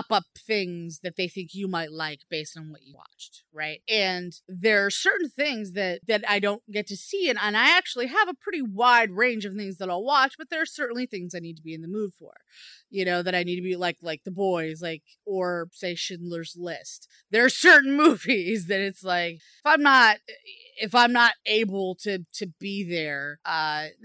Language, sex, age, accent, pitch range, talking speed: English, female, 30-49, American, 175-230 Hz, 220 wpm